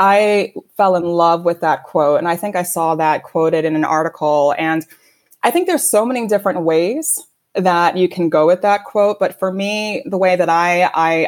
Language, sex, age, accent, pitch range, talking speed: English, female, 20-39, American, 160-190 Hz, 215 wpm